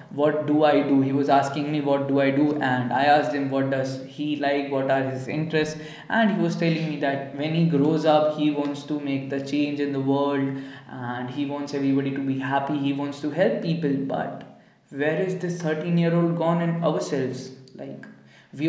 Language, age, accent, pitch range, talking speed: English, 20-39, Indian, 135-150 Hz, 210 wpm